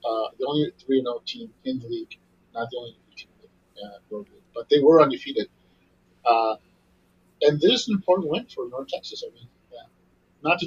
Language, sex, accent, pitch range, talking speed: English, male, American, 110-185 Hz, 200 wpm